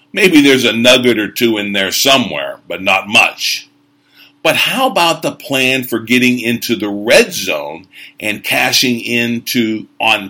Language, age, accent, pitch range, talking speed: English, 50-69, American, 110-145 Hz, 155 wpm